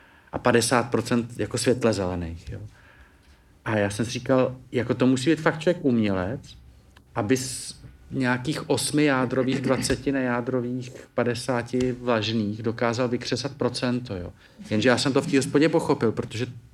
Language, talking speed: Czech, 145 wpm